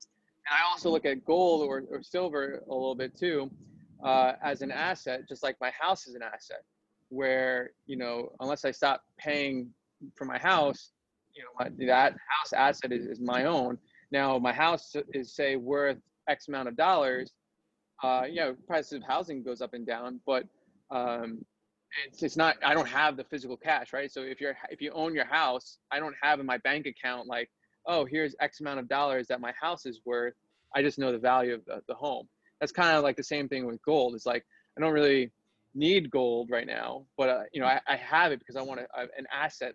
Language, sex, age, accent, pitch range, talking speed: English, male, 20-39, American, 125-145 Hz, 215 wpm